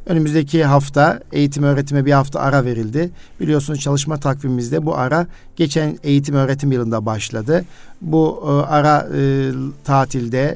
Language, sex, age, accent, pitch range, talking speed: Turkish, male, 50-69, native, 130-145 Hz, 130 wpm